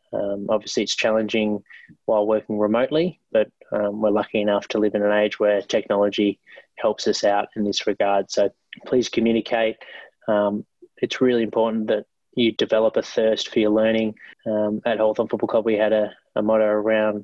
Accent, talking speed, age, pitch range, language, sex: Australian, 180 wpm, 20-39, 105-110 Hz, English, male